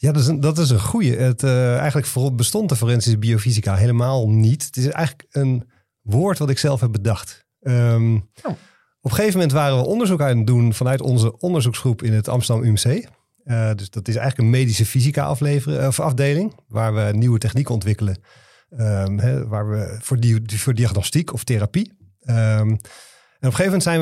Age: 40-59